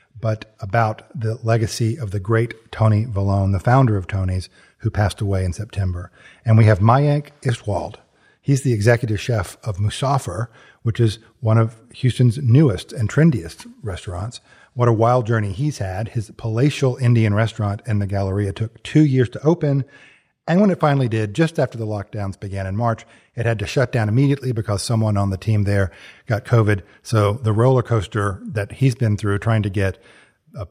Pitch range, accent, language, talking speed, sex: 100-120 Hz, American, English, 185 wpm, male